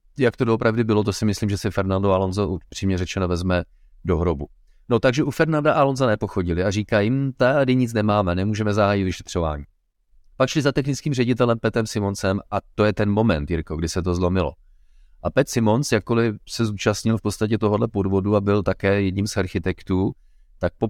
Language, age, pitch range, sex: Czech, 30-49, 90-105 Hz, male